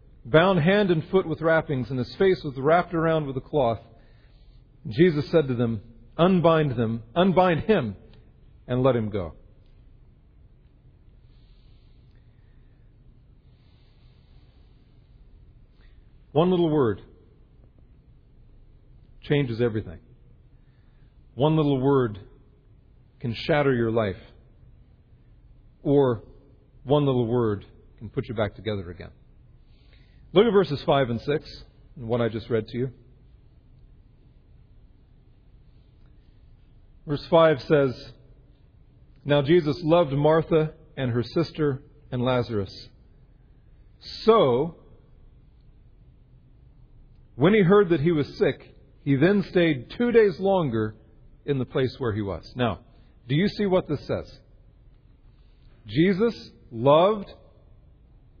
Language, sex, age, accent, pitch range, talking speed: English, male, 40-59, American, 115-155 Hz, 105 wpm